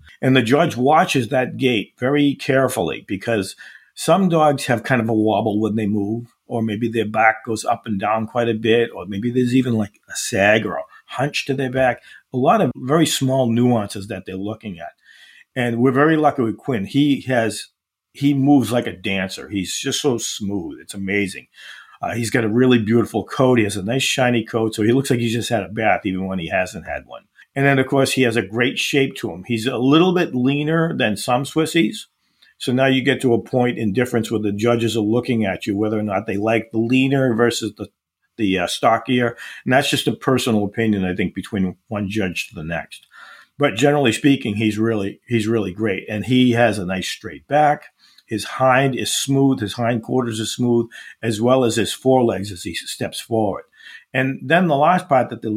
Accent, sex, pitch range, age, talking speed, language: American, male, 110-130 Hz, 50-69, 215 wpm, English